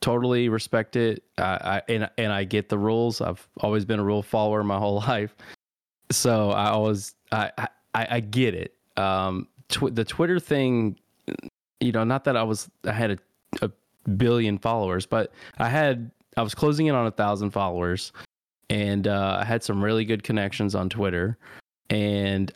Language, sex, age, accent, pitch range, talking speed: English, male, 20-39, American, 100-115 Hz, 180 wpm